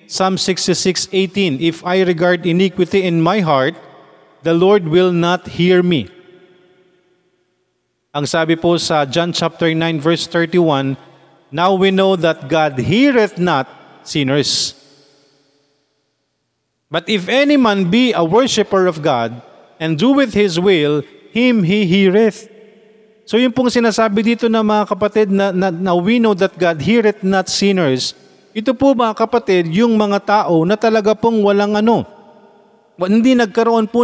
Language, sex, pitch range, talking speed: Filipino, male, 170-215 Hz, 140 wpm